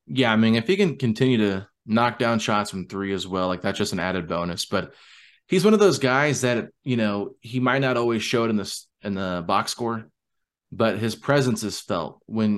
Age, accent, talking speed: 20-39, American, 225 wpm